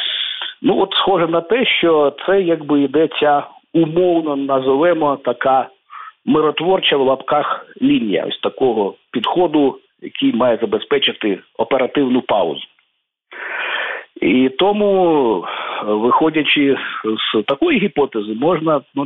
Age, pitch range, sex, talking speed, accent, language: 50-69, 125-185 Hz, male, 100 wpm, native, Ukrainian